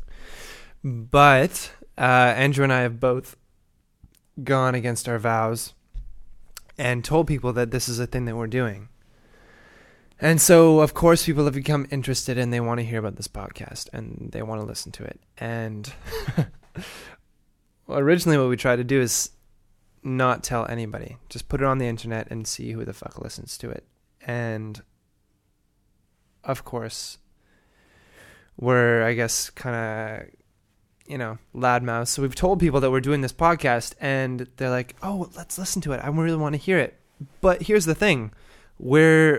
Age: 20-39